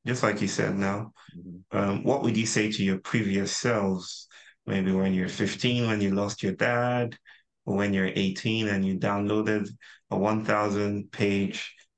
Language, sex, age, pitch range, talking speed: English, male, 30-49, 95-115 Hz, 160 wpm